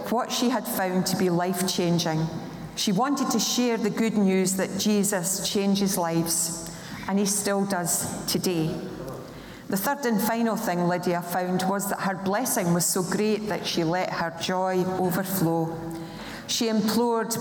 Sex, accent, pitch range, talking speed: female, British, 175-220 Hz, 160 wpm